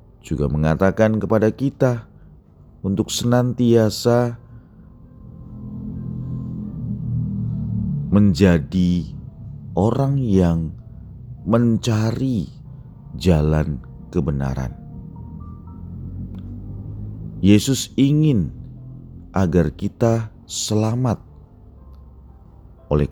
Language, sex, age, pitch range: Indonesian, male, 40-59, 75-115 Hz